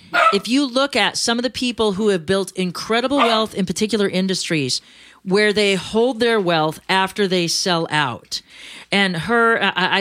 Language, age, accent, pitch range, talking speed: English, 40-59, American, 165-220 Hz, 175 wpm